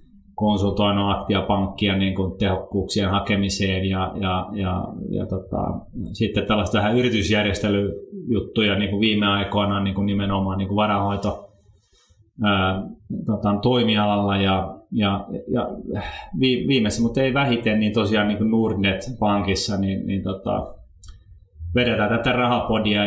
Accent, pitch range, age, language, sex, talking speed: native, 95-110 Hz, 30-49, Finnish, male, 100 wpm